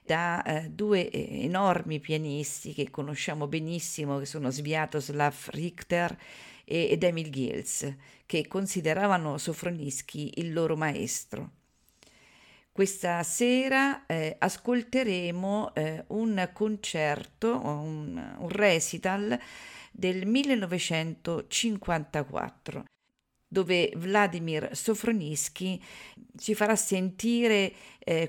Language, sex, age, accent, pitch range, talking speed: Italian, female, 50-69, native, 160-205 Hz, 85 wpm